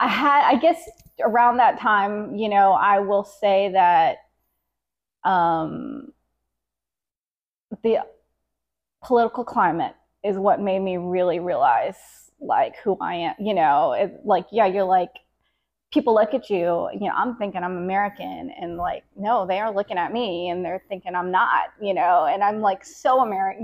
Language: English